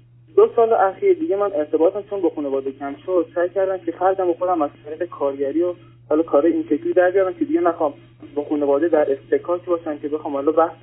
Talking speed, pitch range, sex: 200 wpm, 130-175 Hz, male